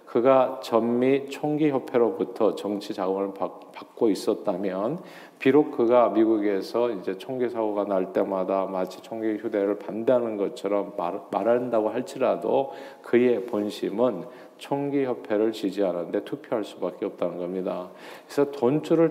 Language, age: Korean, 40-59